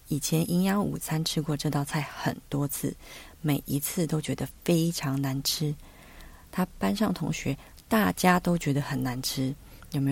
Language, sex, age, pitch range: Chinese, female, 30-49, 140-165 Hz